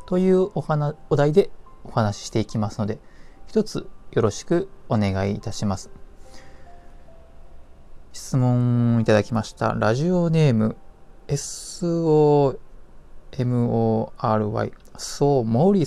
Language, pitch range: Japanese, 105-155 Hz